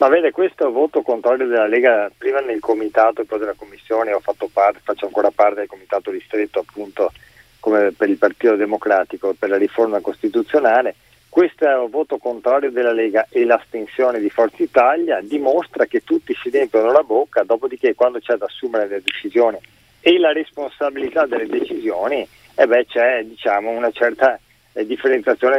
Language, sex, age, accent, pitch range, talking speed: Italian, male, 40-59, native, 110-165 Hz, 170 wpm